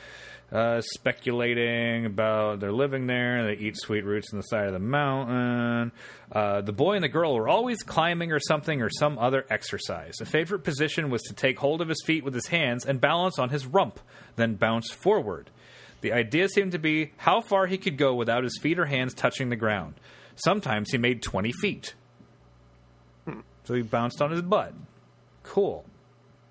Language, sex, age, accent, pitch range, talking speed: English, male, 30-49, American, 115-150 Hz, 185 wpm